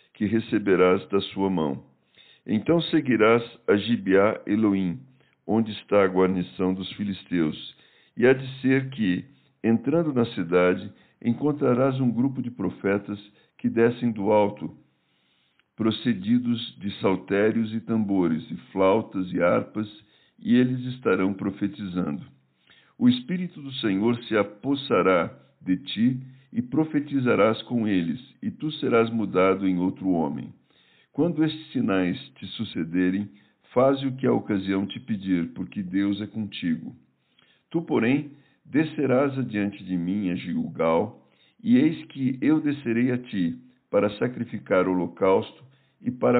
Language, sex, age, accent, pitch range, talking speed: Portuguese, male, 60-79, Brazilian, 100-135 Hz, 130 wpm